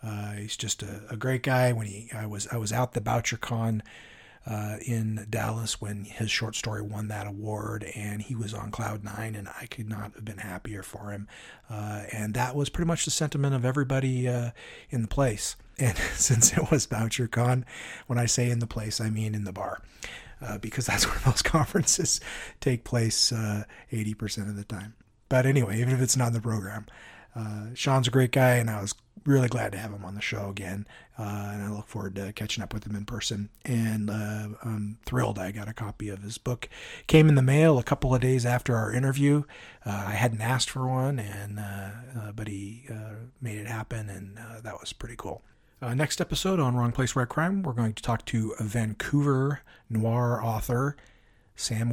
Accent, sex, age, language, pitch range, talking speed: American, male, 40-59, English, 105-125 Hz, 215 wpm